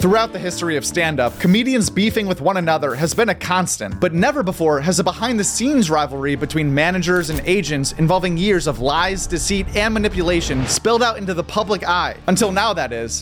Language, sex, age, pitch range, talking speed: English, male, 30-49, 155-205 Hz, 205 wpm